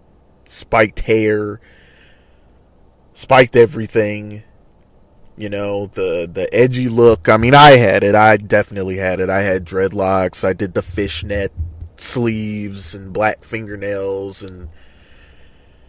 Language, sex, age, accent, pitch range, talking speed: English, male, 20-39, American, 75-120 Hz, 115 wpm